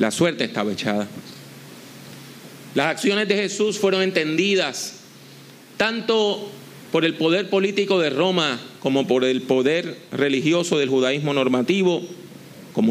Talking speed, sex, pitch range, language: 120 wpm, male, 130-185 Hz, English